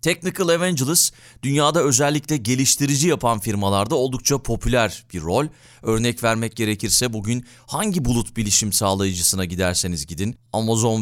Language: Turkish